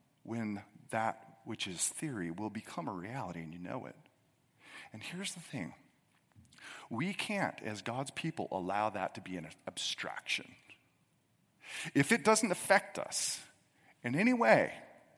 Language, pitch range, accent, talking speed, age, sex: English, 150-215 Hz, American, 140 wpm, 40-59, male